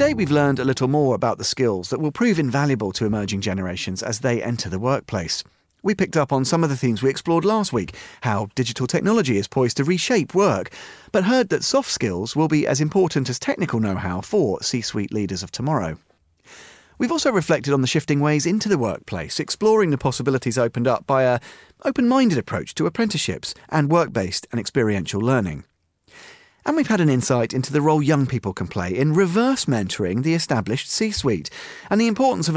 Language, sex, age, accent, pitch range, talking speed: English, male, 40-59, British, 115-175 Hz, 195 wpm